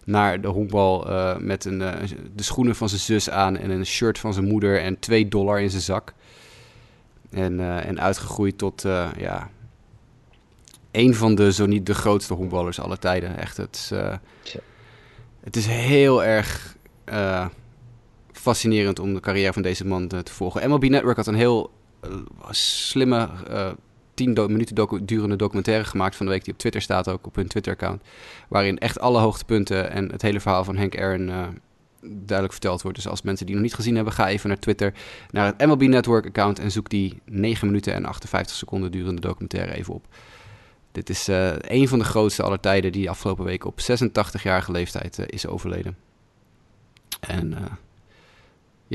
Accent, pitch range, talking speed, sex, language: Dutch, 95-110 Hz, 175 wpm, male, Dutch